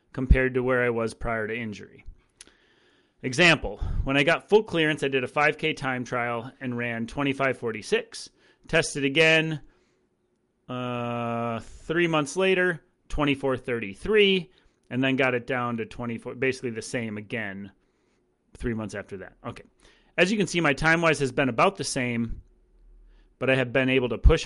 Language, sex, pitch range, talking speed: English, male, 120-155 Hz, 160 wpm